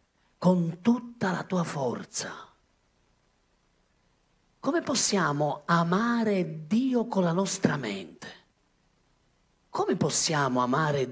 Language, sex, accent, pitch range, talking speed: Italian, male, native, 140-195 Hz, 85 wpm